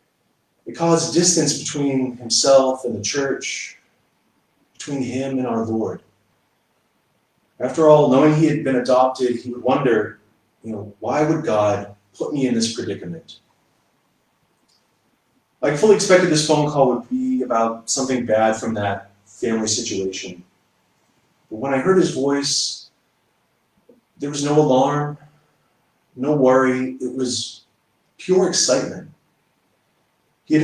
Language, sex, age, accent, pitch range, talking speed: English, male, 30-49, American, 115-150 Hz, 125 wpm